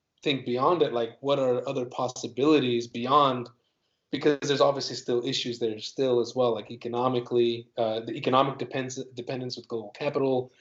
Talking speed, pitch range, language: 160 wpm, 120-140 Hz, English